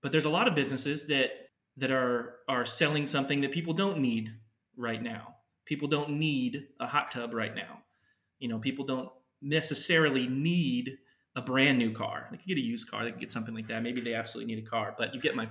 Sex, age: male, 30-49